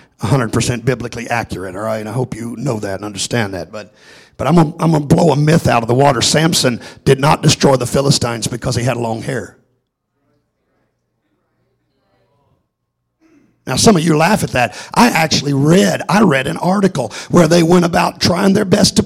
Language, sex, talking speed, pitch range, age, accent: English, male, 190 wpm, 125-205 Hz, 50-69, American